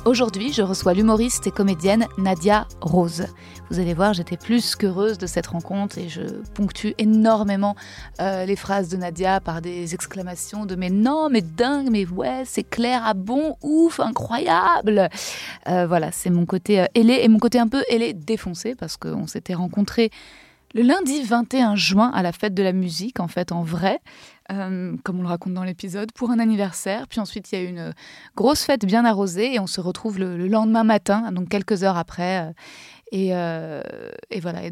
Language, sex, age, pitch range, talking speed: French, female, 20-39, 185-225 Hz, 195 wpm